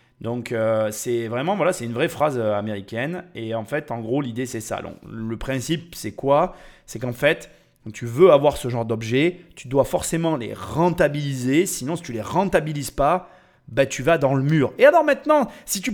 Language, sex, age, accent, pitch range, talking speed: French, male, 30-49, French, 130-200 Hz, 205 wpm